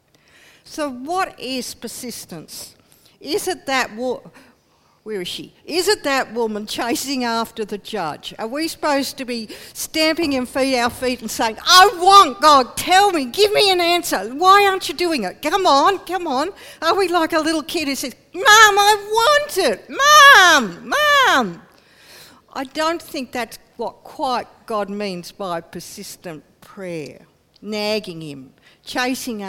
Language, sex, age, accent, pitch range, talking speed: English, female, 60-79, Australian, 210-310 Hz, 155 wpm